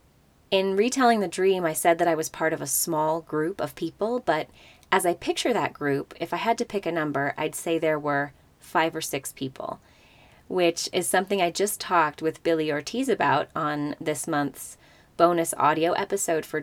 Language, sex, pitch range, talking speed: English, female, 150-190 Hz, 195 wpm